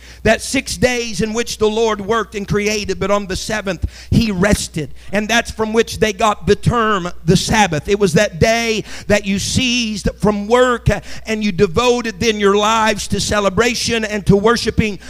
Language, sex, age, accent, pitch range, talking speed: English, male, 50-69, American, 215-280 Hz, 185 wpm